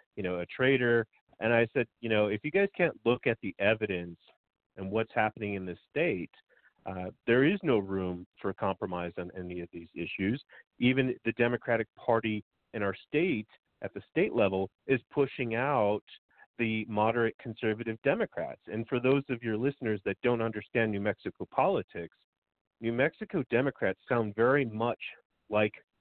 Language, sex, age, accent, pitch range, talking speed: English, male, 40-59, American, 95-120 Hz, 165 wpm